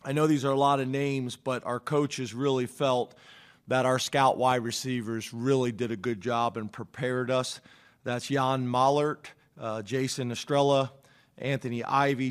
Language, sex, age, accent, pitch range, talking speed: English, male, 40-59, American, 120-135 Hz, 165 wpm